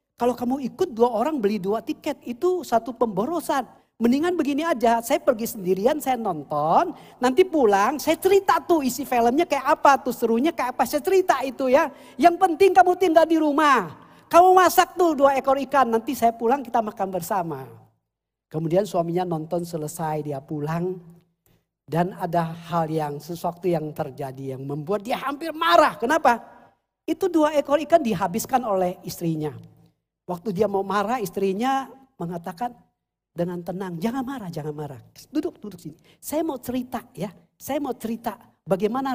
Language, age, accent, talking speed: Indonesian, 40-59, native, 160 wpm